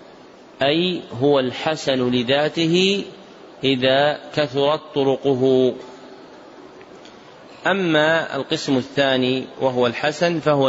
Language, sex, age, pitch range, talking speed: Arabic, male, 40-59, 125-150 Hz, 75 wpm